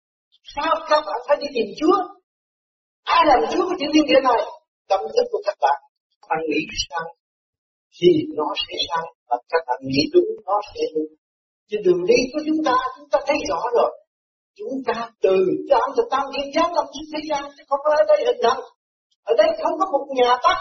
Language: Vietnamese